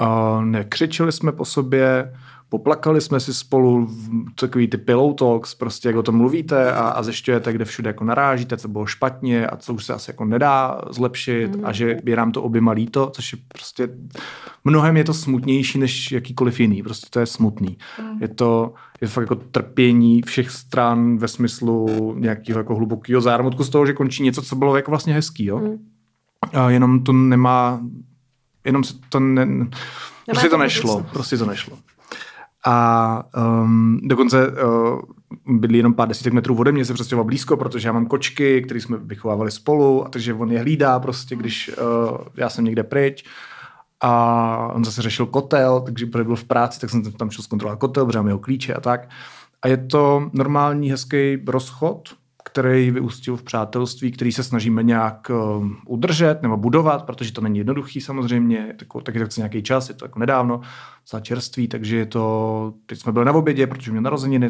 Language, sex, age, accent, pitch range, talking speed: Czech, male, 30-49, native, 115-130 Hz, 180 wpm